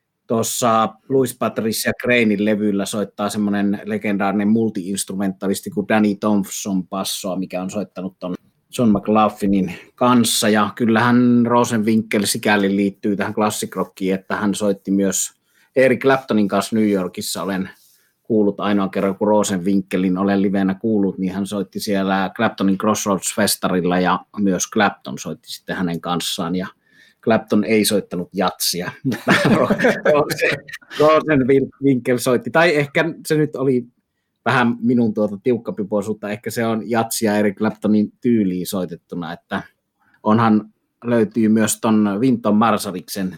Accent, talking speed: native, 125 wpm